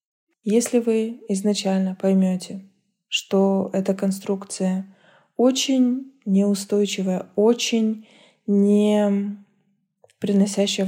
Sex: female